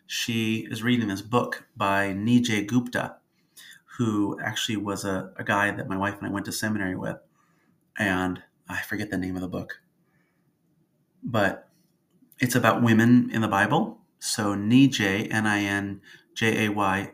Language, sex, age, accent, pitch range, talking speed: English, male, 40-59, American, 100-130 Hz, 145 wpm